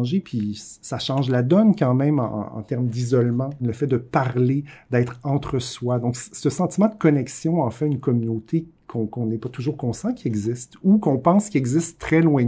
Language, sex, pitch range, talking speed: French, male, 120-150 Hz, 195 wpm